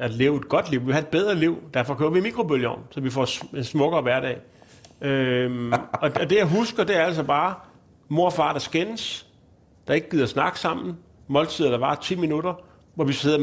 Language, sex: Danish, male